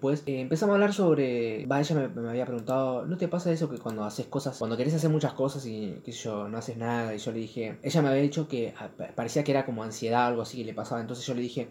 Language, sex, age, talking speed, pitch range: Spanish, male, 20-39, 275 wpm, 125-160 Hz